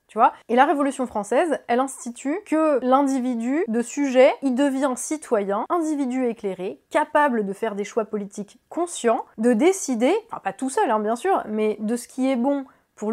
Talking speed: 185 wpm